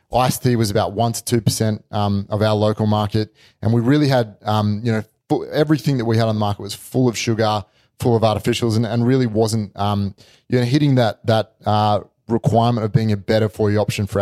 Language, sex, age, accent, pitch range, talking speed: English, male, 30-49, Australian, 110-125 Hz, 230 wpm